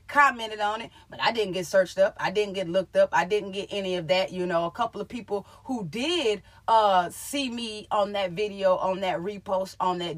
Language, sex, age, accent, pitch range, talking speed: English, female, 30-49, American, 205-295 Hz, 230 wpm